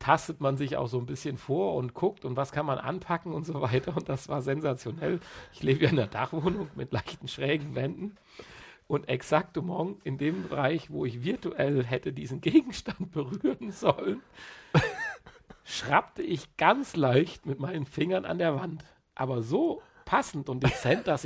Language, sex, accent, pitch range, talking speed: German, male, German, 135-185 Hz, 170 wpm